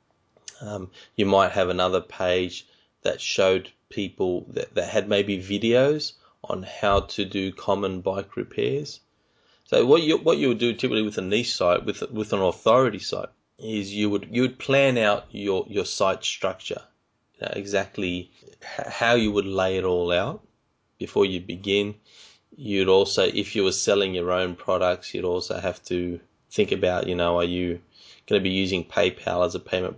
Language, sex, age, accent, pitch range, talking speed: English, male, 20-39, Australian, 90-105 Hz, 180 wpm